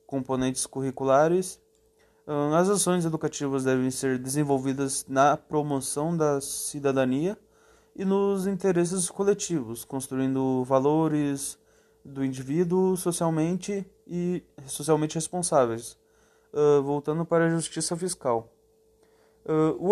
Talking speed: 90 wpm